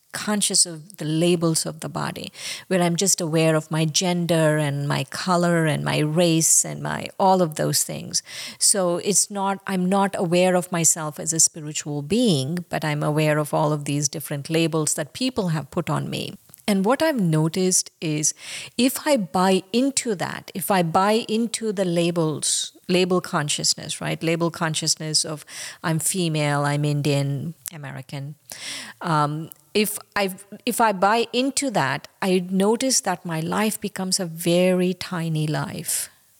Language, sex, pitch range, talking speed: English, female, 155-200 Hz, 160 wpm